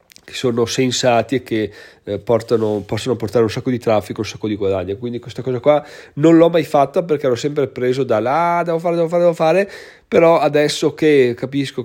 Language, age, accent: Italian, 20-39, native